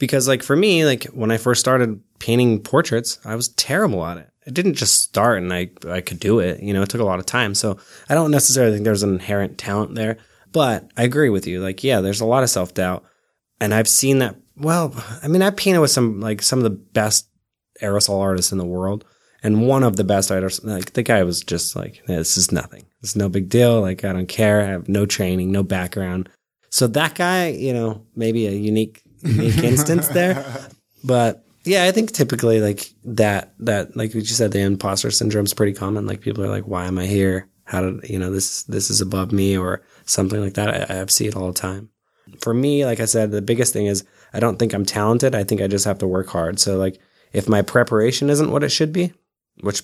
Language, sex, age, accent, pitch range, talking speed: English, male, 20-39, American, 95-120 Hz, 235 wpm